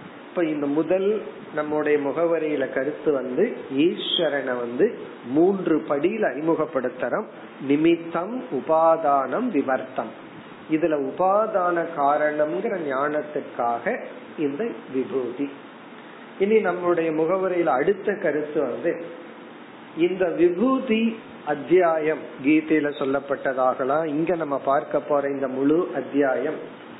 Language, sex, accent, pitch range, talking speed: Tamil, male, native, 145-185 Hz, 70 wpm